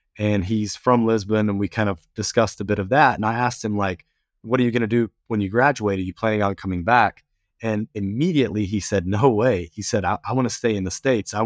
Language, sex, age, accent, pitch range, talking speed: English, male, 30-49, American, 100-120 Hz, 260 wpm